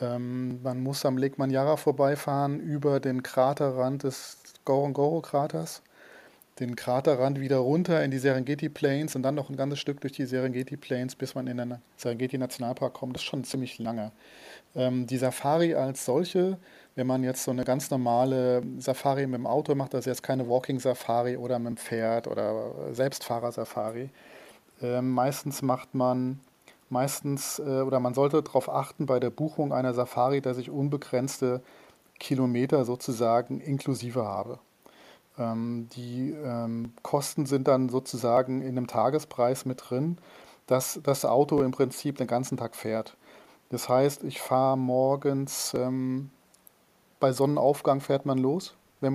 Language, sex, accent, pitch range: German, male, German, 125-140 Hz